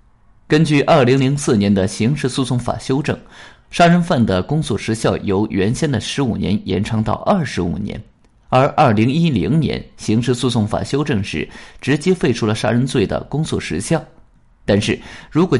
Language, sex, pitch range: Chinese, male, 105-150 Hz